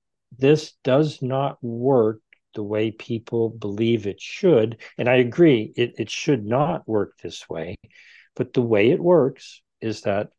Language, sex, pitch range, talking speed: English, male, 110-145 Hz, 155 wpm